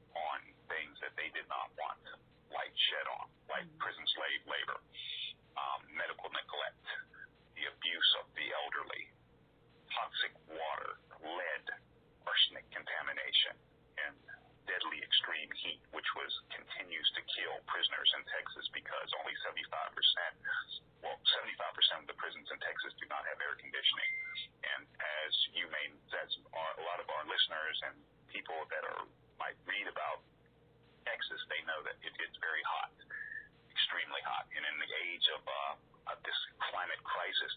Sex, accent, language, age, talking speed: male, American, English, 40-59, 150 wpm